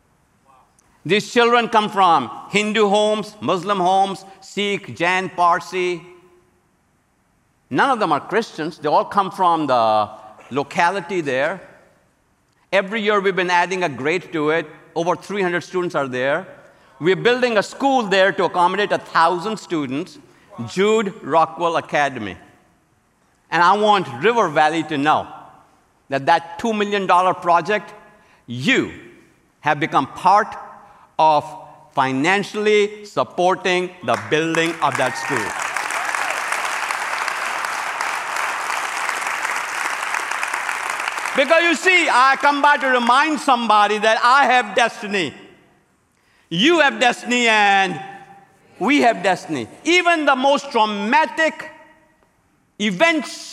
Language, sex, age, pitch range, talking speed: English, male, 50-69, 175-245 Hz, 110 wpm